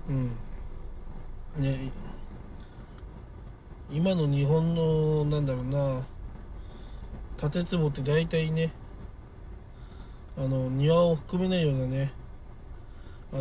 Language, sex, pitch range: Japanese, male, 130-165 Hz